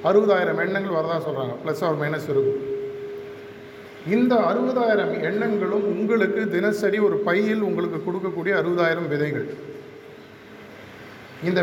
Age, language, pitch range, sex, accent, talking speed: 50-69, Tamil, 155-205 Hz, male, native, 105 wpm